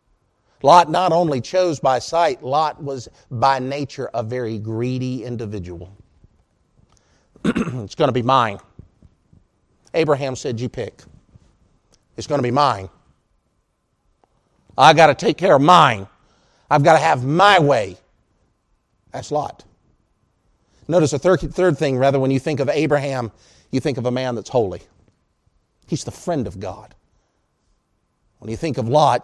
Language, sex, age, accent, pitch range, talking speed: English, male, 50-69, American, 110-150 Hz, 145 wpm